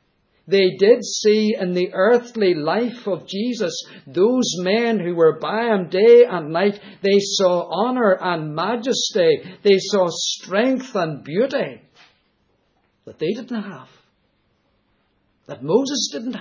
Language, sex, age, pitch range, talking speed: English, male, 60-79, 175-225 Hz, 130 wpm